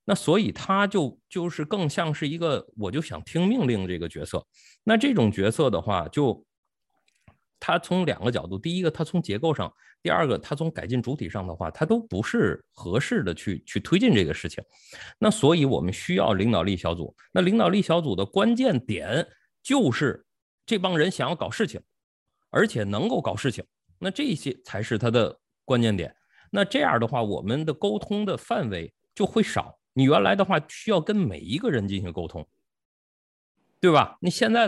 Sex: male